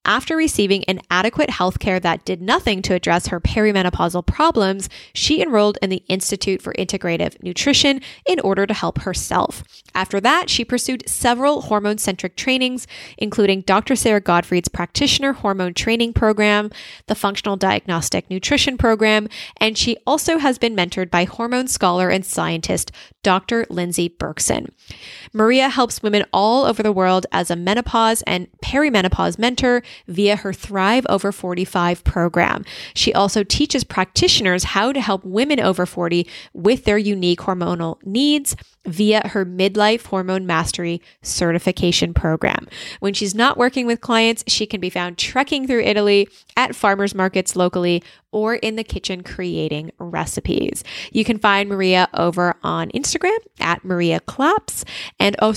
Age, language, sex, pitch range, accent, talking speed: 10-29, English, female, 185-235 Hz, American, 145 wpm